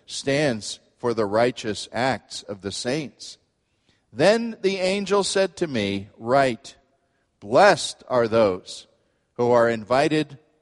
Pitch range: 115-155 Hz